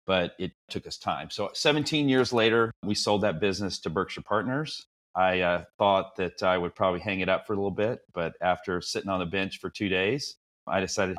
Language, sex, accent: English, male, American